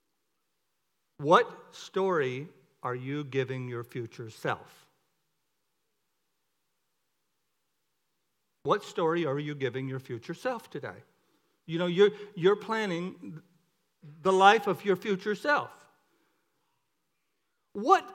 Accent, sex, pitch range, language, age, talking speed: American, male, 145-190 Hz, English, 60-79, 95 wpm